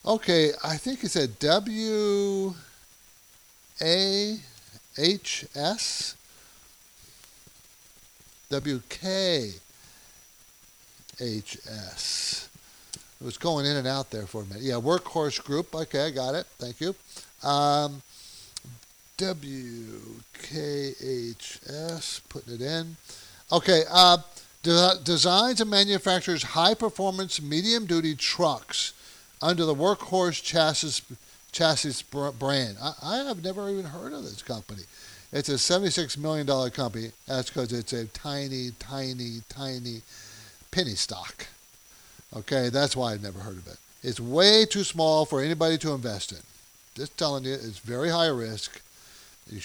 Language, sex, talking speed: English, male, 110 wpm